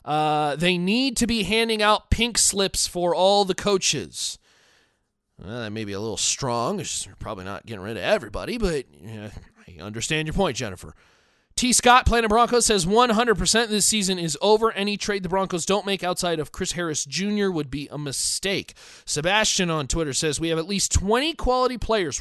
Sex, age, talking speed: male, 30-49, 190 wpm